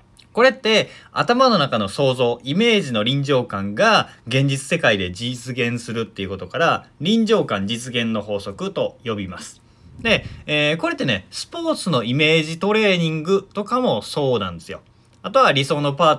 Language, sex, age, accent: Japanese, male, 20-39, native